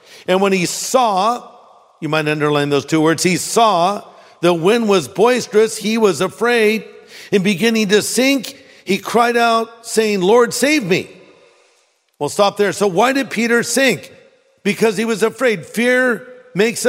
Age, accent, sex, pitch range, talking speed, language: 50-69, American, male, 160-225 Hz, 155 wpm, English